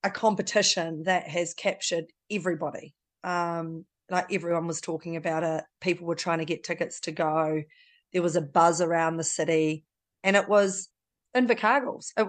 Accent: Australian